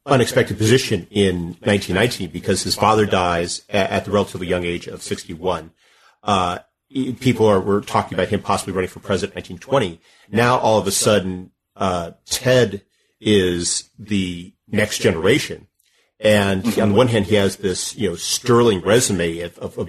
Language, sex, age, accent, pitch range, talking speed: English, male, 40-59, American, 95-115 Hz, 165 wpm